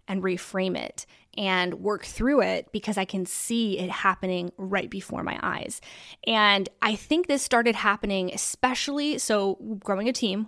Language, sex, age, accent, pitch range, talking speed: English, female, 20-39, American, 185-215 Hz, 160 wpm